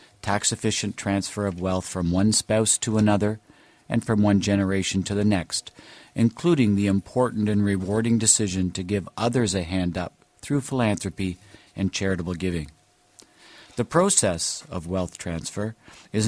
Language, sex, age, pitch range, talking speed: English, male, 50-69, 95-115 Hz, 145 wpm